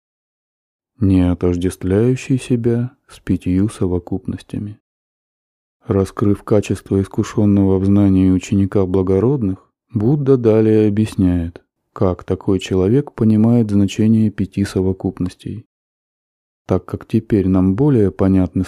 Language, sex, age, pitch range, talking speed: Russian, male, 20-39, 90-110 Hz, 95 wpm